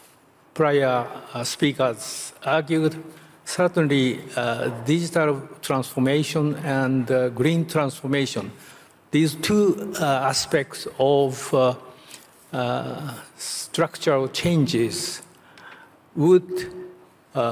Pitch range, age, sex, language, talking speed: 125-150 Hz, 60-79, male, English, 70 wpm